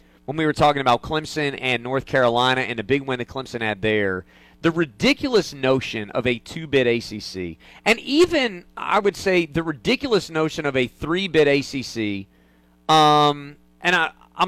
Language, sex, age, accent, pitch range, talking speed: English, male, 40-59, American, 115-170 Hz, 165 wpm